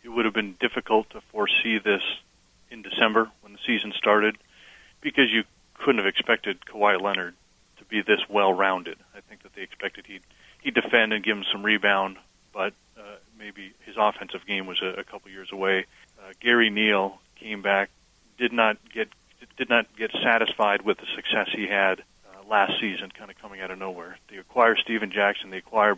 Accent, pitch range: American, 100-110 Hz